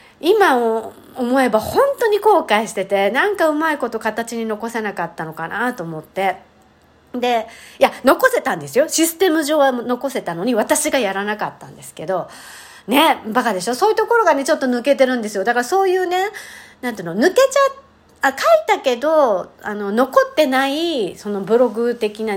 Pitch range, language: 195-285 Hz, Japanese